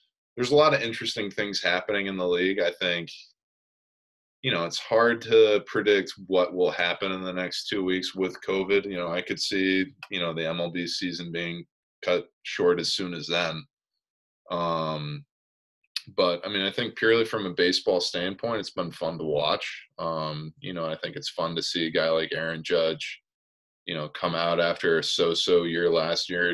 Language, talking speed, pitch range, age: English, 190 wpm, 85-95 Hz, 20-39